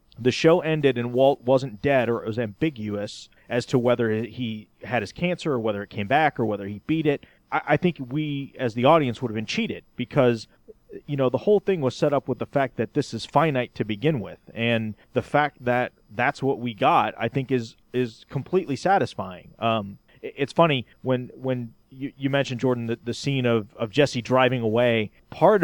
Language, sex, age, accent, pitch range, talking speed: English, male, 30-49, American, 115-145 Hz, 205 wpm